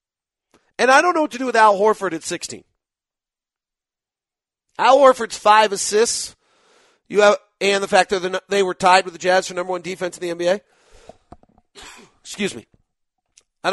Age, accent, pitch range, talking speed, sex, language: 40-59, American, 175-225 Hz, 165 wpm, male, English